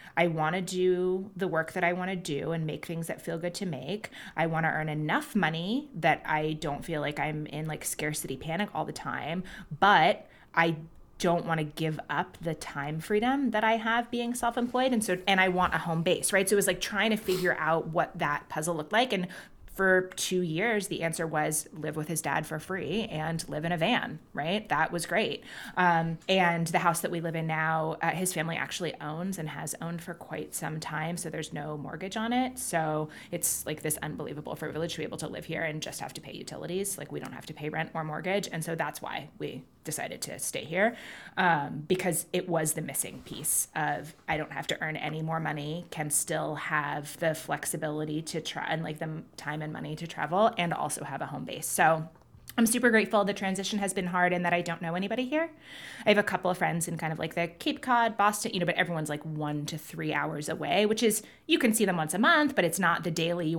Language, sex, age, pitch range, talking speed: English, female, 20-39, 155-190 Hz, 240 wpm